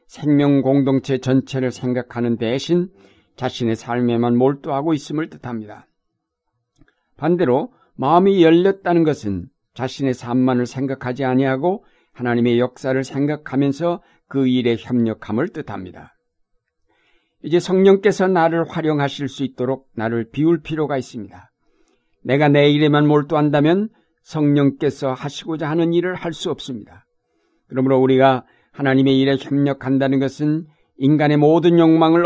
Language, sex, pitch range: Korean, male, 125-160 Hz